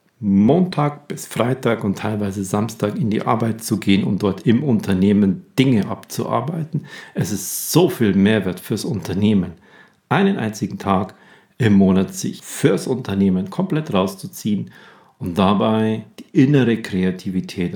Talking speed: 130 wpm